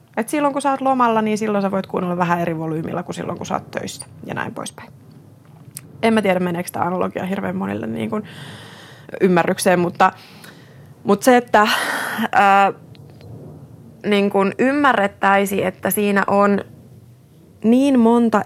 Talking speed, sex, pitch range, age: 155 wpm, female, 170-210 Hz, 20-39